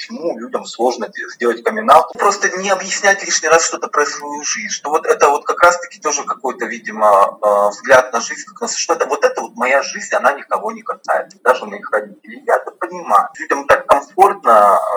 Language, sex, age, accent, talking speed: Russian, male, 30-49, native, 180 wpm